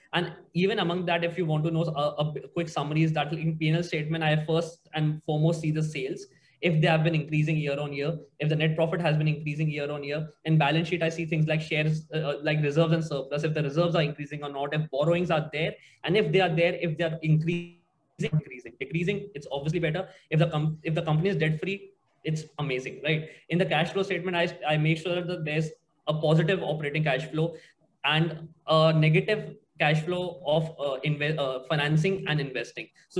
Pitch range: 155-180 Hz